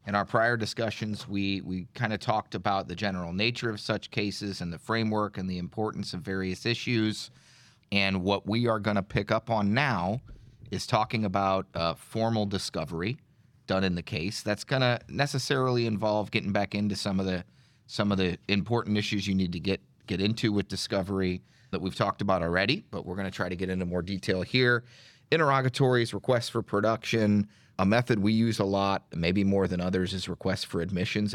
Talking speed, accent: 195 wpm, American